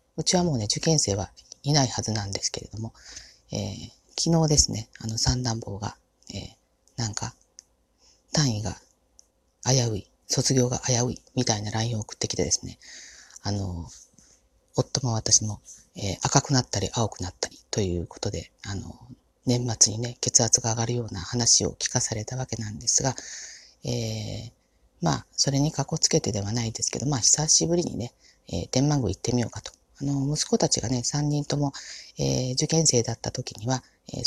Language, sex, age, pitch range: Japanese, female, 40-59, 110-140 Hz